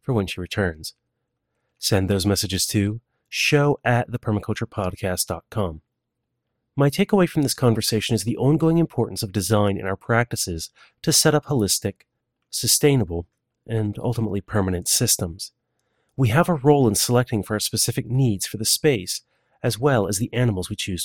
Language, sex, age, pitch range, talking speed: English, male, 30-49, 105-135 Hz, 155 wpm